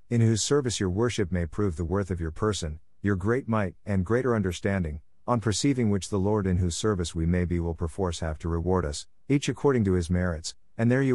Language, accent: English, American